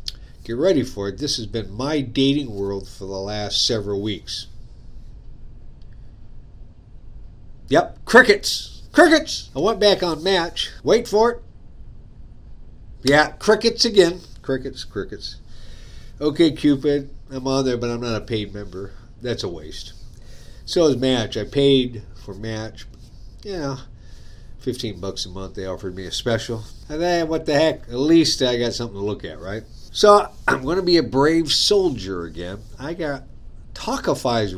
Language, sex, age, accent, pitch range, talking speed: English, male, 50-69, American, 105-145 Hz, 155 wpm